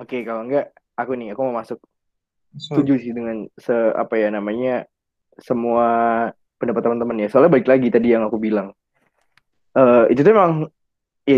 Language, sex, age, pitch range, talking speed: Indonesian, male, 20-39, 135-165 Hz, 165 wpm